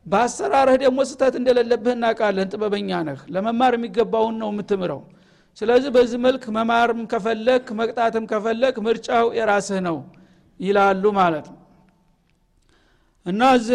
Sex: male